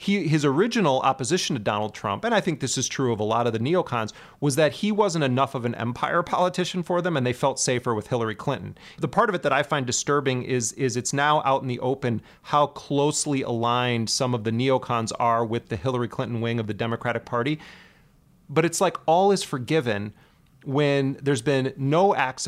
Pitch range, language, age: 120-145 Hz, English, 30-49